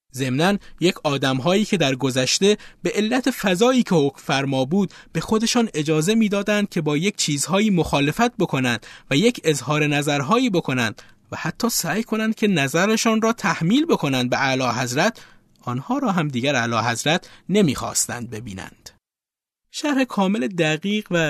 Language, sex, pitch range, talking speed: Persian, male, 130-190 Hz, 145 wpm